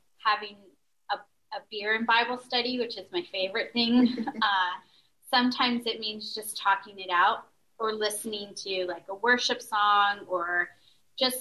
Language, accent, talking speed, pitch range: English, American, 155 wpm, 190-250 Hz